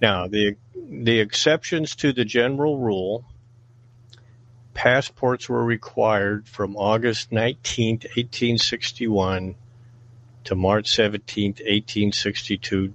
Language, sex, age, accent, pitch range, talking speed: English, male, 50-69, American, 105-120 Hz, 90 wpm